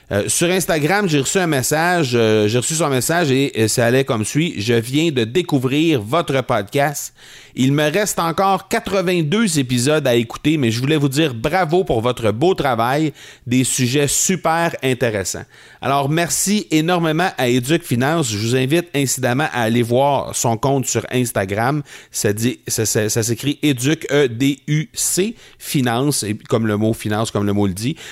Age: 40-59